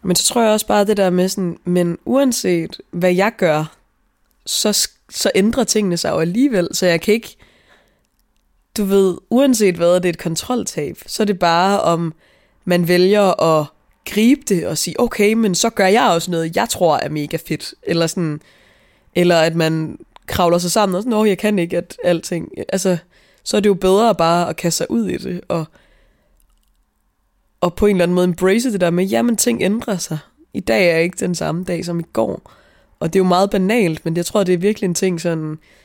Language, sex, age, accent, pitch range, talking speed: Danish, female, 20-39, native, 170-205 Hz, 215 wpm